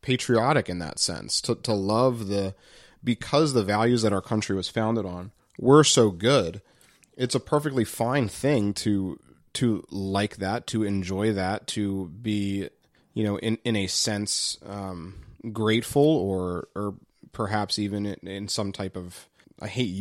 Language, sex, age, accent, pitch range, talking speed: English, male, 30-49, American, 95-115 Hz, 160 wpm